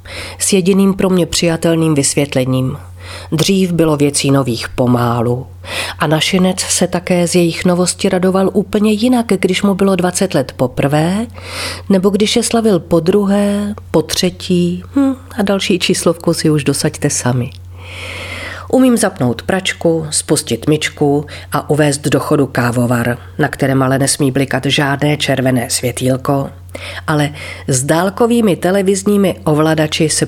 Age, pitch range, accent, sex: 40-59, 125-185 Hz, native, female